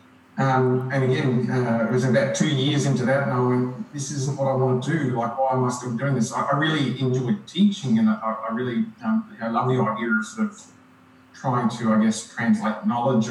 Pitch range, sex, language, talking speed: 115-175 Hz, male, English, 235 wpm